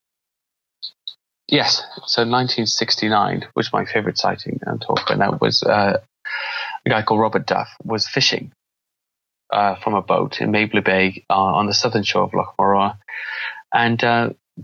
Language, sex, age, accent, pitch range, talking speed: English, male, 20-39, British, 105-120 Hz, 160 wpm